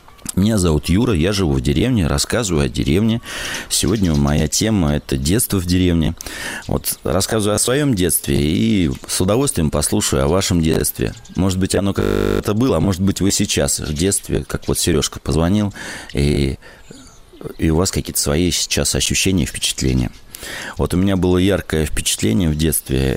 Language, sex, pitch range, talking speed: Russian, male, 75-95 Hz, 165 wpm